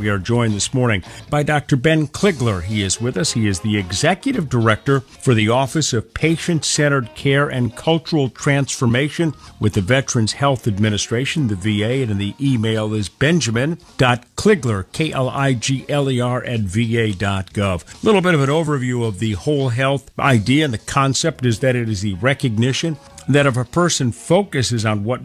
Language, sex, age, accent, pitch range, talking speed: English, male, 50-69, American, 110-140 Hz, 165 wpm